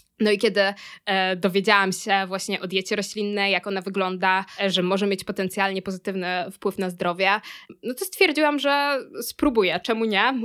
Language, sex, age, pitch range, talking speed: Polish, female, 20-39, 195-230 Hz, 155 wpm